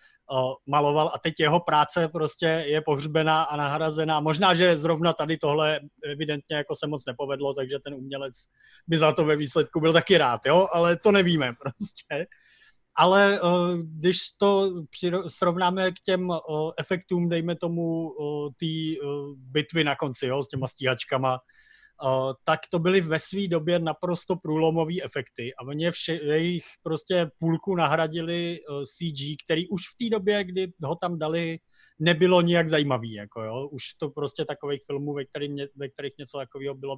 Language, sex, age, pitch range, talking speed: Slovak, male, 30-49, 145-175 Hz, 145 wpm